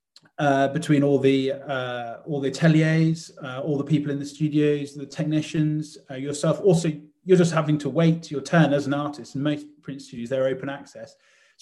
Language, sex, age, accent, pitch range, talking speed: English, male, 30-49, British, 135-155 Hz, 190 wpm